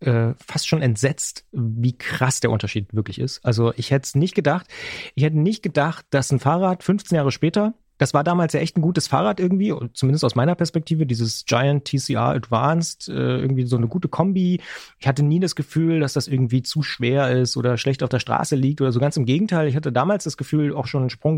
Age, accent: 30-49, German